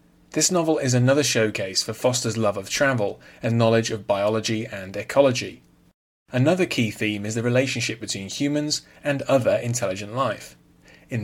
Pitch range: 110-135 Hz